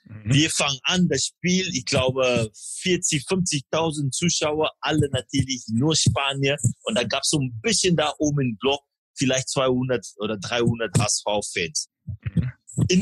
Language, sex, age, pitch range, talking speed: German, male, 30-49, 120-155 Hz, 145 wpm